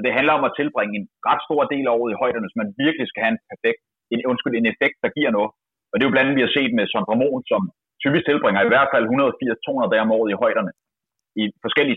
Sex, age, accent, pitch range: male, 30-49, native, 115-165 Hz